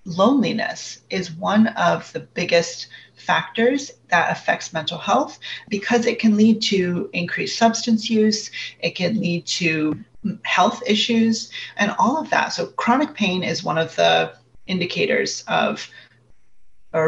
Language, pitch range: English, 170-220 Hz